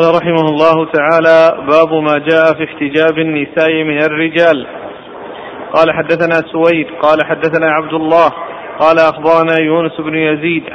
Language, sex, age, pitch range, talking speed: Arabic, male, 40-59, 155-165 Hz, 130 wpm